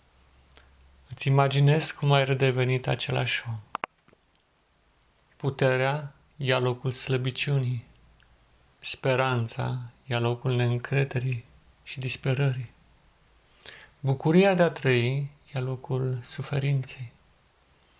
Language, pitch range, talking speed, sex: Romanian, 125-145 Hz, 80 wpm, male